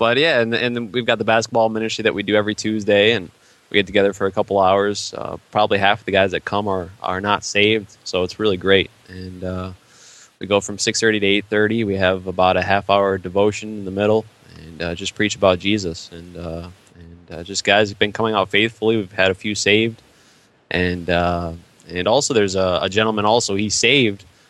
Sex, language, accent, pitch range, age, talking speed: male, English, American, 95-110 Hz, 20-39, 215 wpm